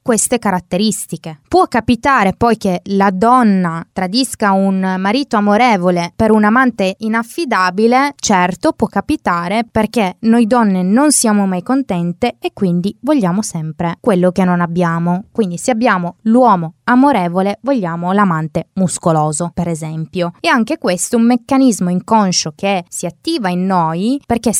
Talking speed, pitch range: 140 wpm, 185-245 Hz